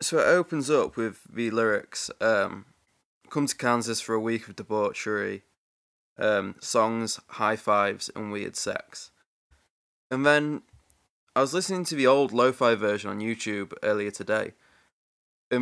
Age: 20-39